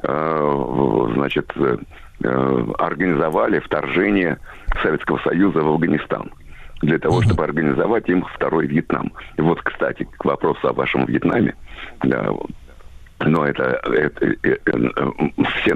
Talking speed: 105 wpm